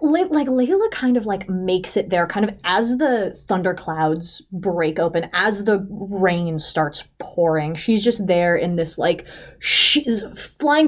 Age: 20-39